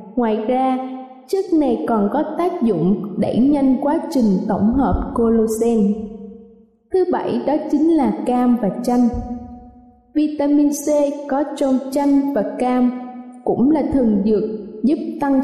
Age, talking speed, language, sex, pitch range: 20-39, 140 wpm, Vietnamese, female, 220-285 Hz